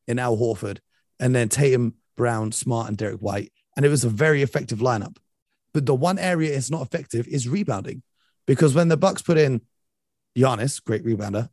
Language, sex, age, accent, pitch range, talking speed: English, male, 30-49, British, 110-145 Hz, 185 wpm